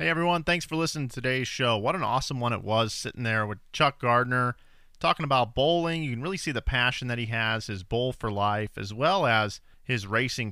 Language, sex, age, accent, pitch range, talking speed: English, male, 30-49, American, 110-150 Hz, 230 wpm